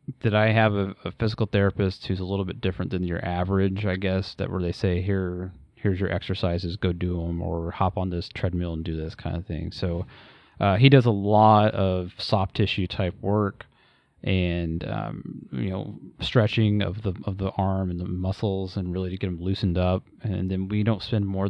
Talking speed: 210 wpm